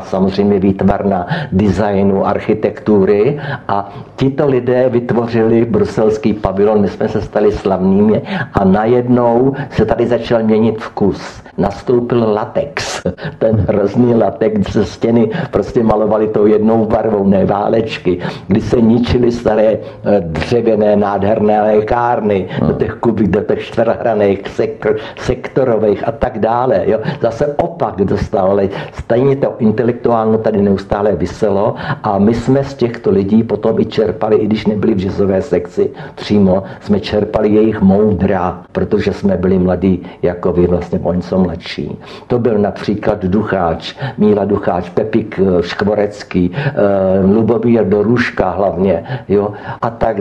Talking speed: 125 wpm